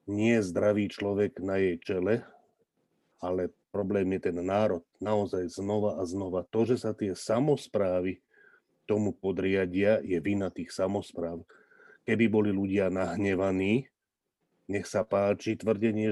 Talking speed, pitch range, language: 125 wpm, 100-120 Hz, Slovak